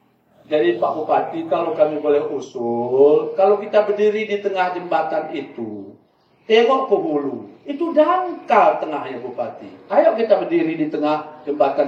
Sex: male